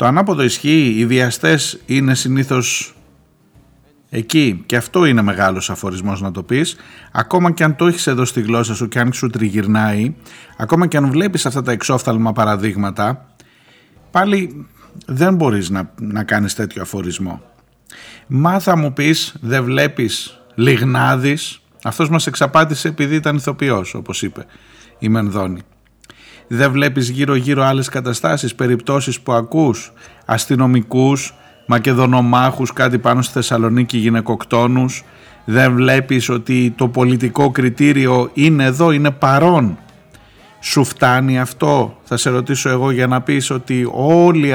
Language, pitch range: Greek, 115-145 Hz